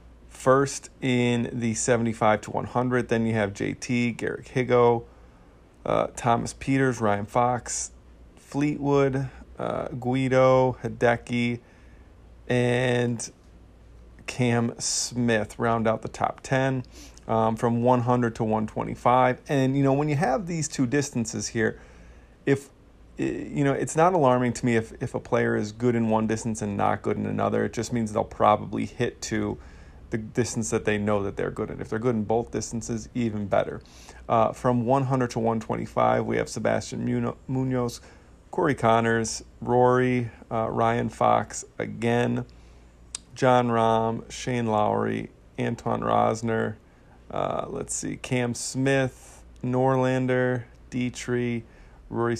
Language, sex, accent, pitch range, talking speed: English, male, American, 110-125 Hz, 135 wpm